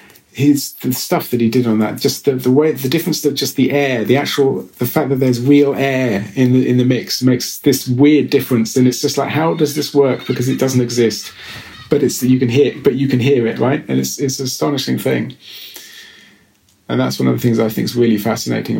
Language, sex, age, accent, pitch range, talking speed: Swedish, male, 40-59, British, 120-135 Hz, 240 wpm